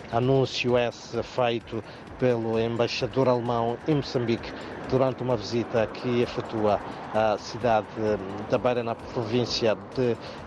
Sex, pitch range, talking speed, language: male, 110-125 Hz, 115 wpm, Portuguese